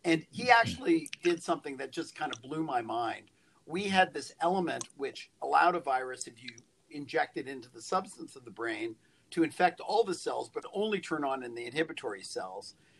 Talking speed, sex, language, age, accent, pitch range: 200 wpm, male, English, 50-69, American, 135-200 Hz